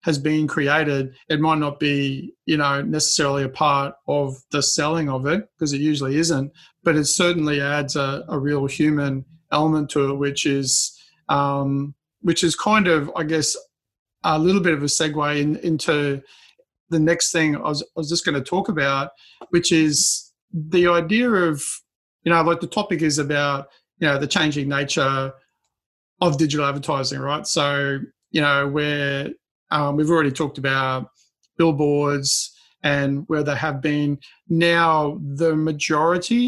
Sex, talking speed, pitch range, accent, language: male, 165 wpm, 140-165 Hz, Australian, English